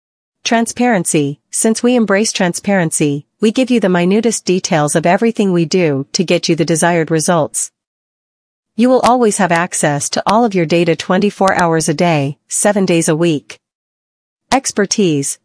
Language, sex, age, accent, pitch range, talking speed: English, female, 40-59, American, 165-200 Hz, 155 wpm